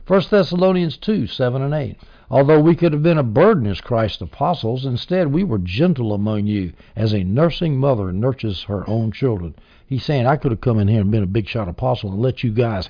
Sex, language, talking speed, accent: male, English, 225 wpm, American